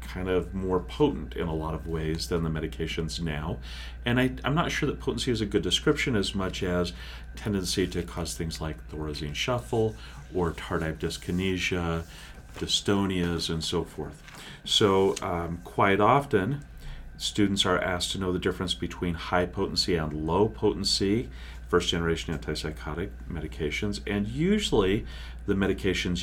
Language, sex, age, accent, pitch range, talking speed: English, male, 40-59, American, 75-95 Hz, 145 wpm